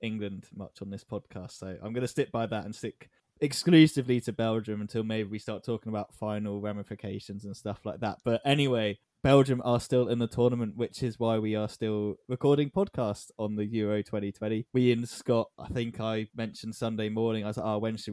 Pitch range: 105-120 Hz